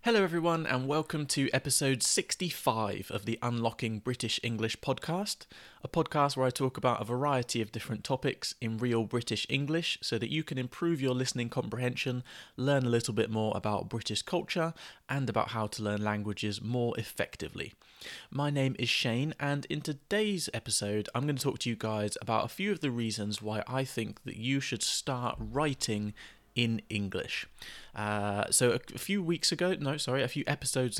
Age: 20-39